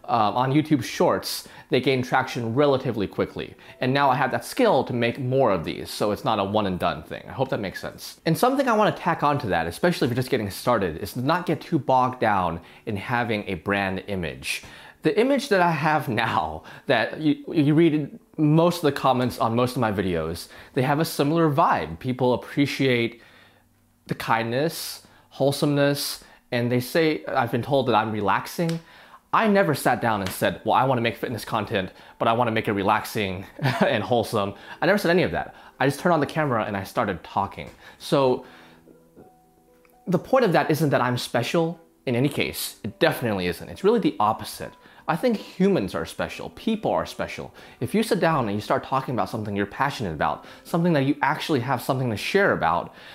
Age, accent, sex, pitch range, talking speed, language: 30-49, American, male, 105-155 Hz, 205 wpm, English